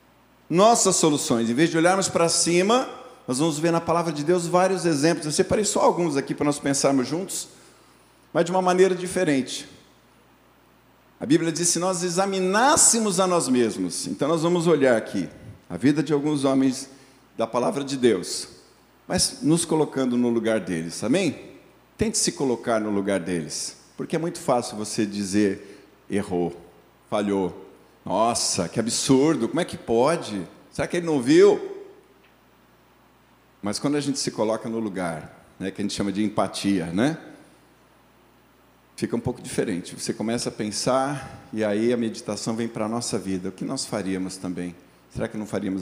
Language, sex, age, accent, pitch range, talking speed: Portuguese, male, 50-69, Brazilian, 105-170 Hz, 170 wpm